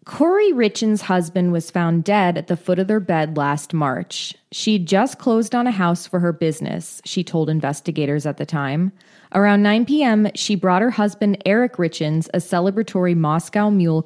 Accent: American